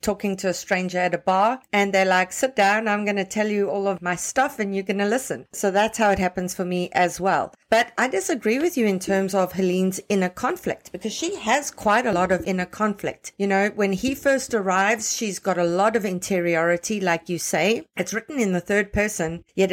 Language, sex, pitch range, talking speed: English, female, 180-215 Hz, 230 wpm